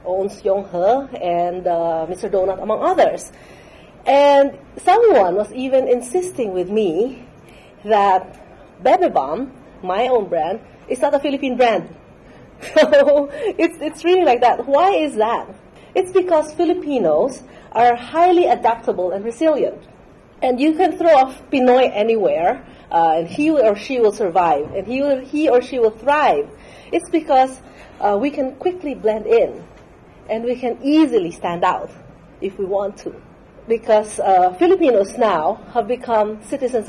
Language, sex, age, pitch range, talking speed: Filipino, female, 40-59, 200-290 Hz, 145 wpm